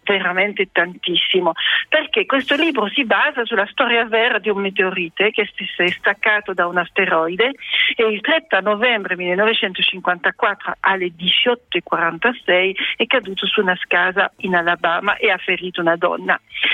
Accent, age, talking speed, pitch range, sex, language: native, 50-69, 140 wpm, 185-235 Hz, female, Italian